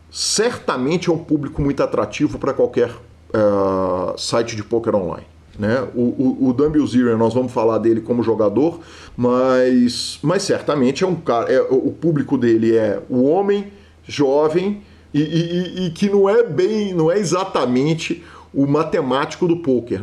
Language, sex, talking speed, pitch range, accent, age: Portuguese, male, 165 wpm, 120-170 Hz, Brazilian, 40-59